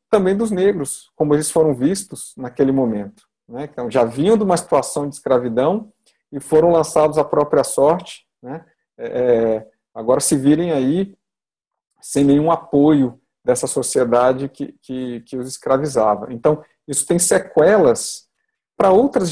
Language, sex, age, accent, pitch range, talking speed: Portuguese, male, 50-69, Brazilian, 130-185 Hz, 135 wpm